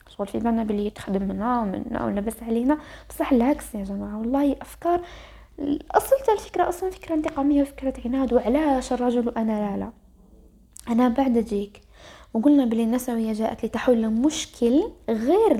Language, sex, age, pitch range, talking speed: Arabic, female, 20-39, 210-265 Hz, 140 wpm